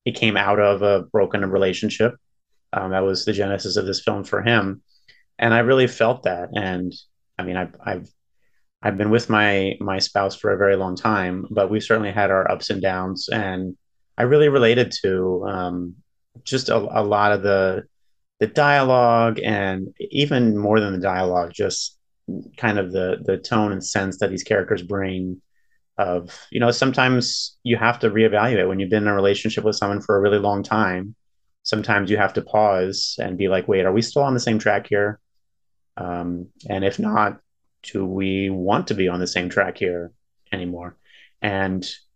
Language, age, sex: English, 30-49, male